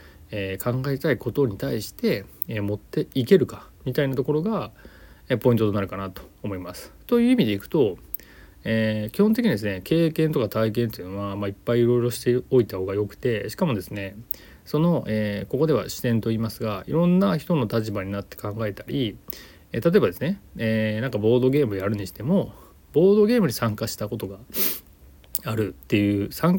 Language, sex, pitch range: Japanese, male, 100-145 Hz